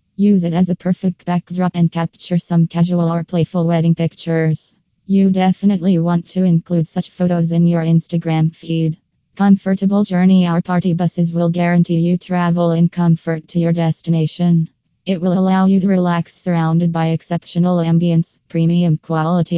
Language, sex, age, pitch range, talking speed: English, female, 20-39, 165-180 Hz, 155 wpm